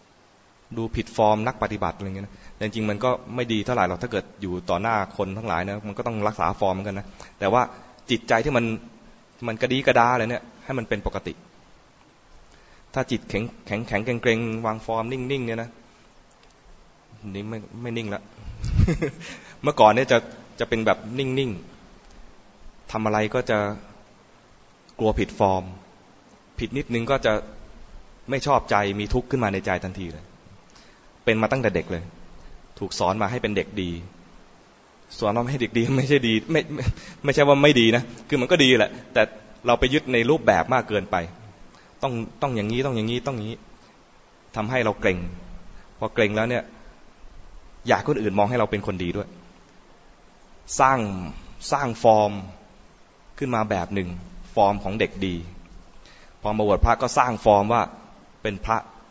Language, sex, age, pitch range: English, male, 20-39, 100-120 Hz